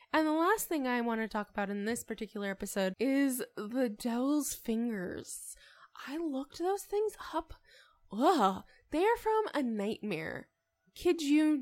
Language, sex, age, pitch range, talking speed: English, female, 10-29, 205-270 Hz, 155 wpm